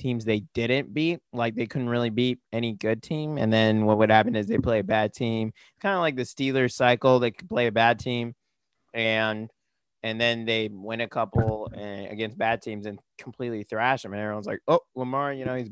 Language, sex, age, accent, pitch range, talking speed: English, male, 20-39, American, 110-130 Hz, 220 wpm